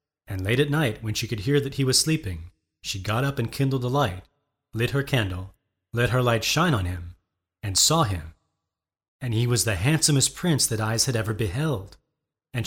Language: English